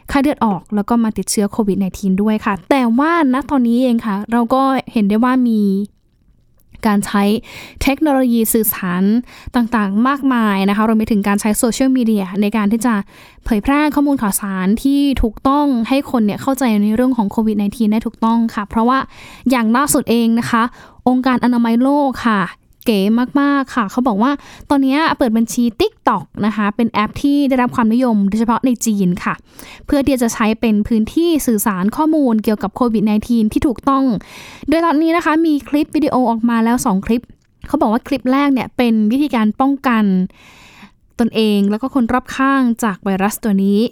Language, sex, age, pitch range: Thai, female, 10-29, 215-265 Hz